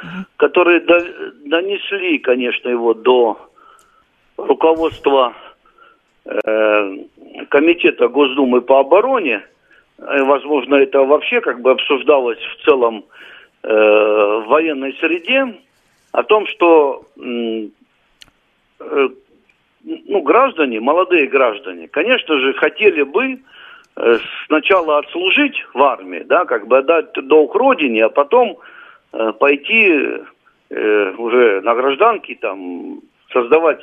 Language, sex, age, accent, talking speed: Russian, male, 60-79, native, 90 wpm